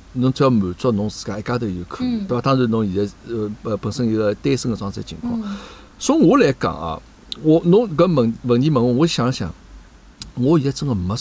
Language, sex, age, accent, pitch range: Chinese, male, 60-79, native, 110-170 Hz